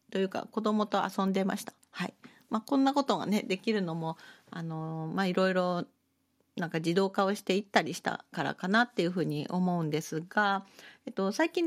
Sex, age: female, 40-59